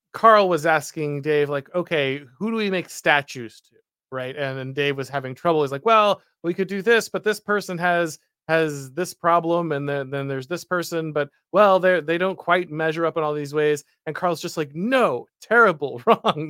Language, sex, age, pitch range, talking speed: English, male, 30-49, 140-175 Hz, 210 wpm